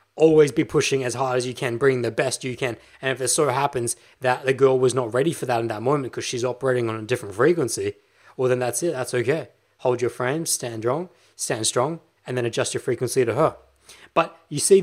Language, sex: English, male